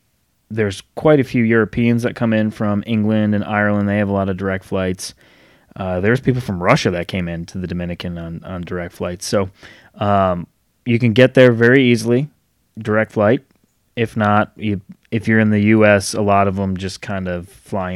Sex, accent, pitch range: male, American, 95-110 Hz